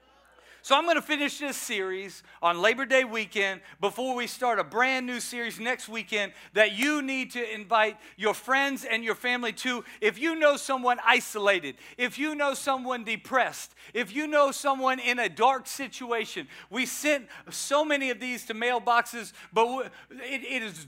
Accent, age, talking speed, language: American, 40-59, 175 wpm, English